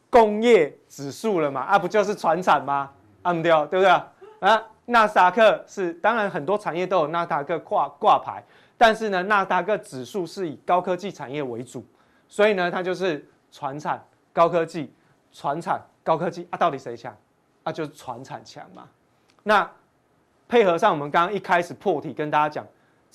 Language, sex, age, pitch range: Chinese, male, 20-39, 145-195 Hz